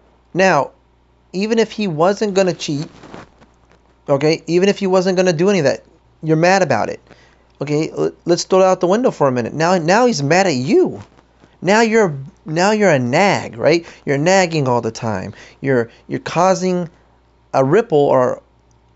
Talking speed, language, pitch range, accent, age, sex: 180 wpm, English, 120-195 Hz, American, 30-49, male